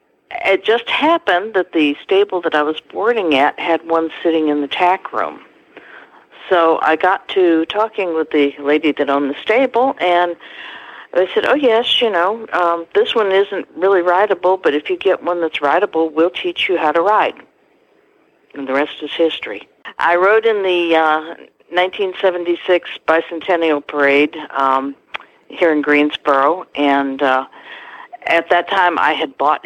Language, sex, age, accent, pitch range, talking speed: English, female, 60-79, American, 145-195 Hz, 165 wpm